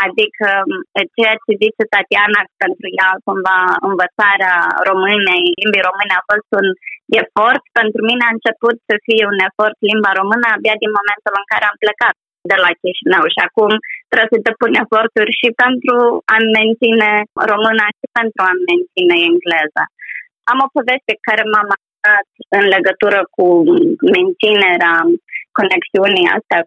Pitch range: 190-230 Hz